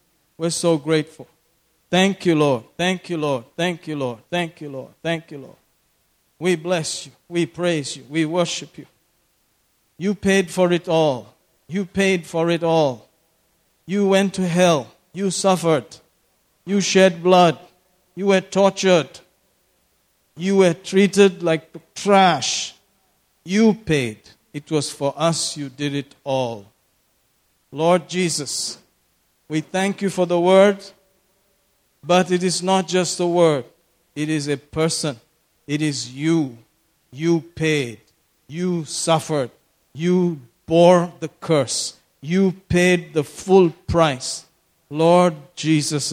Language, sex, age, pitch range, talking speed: English, male, 50-69, 145-180 Hz, 130 wpm